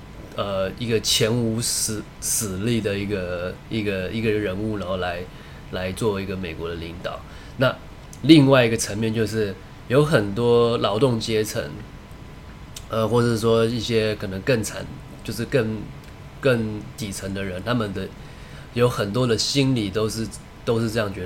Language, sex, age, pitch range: Chinese, male, 20-39, 100-120 Hz